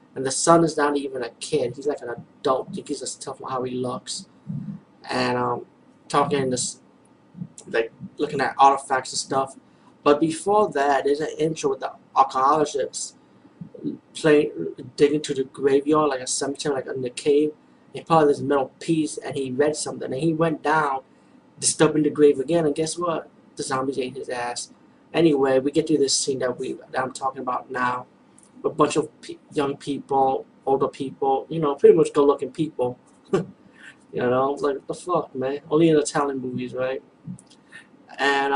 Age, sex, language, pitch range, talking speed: 20-39, male, English, 135-155 Hz, 180 wpm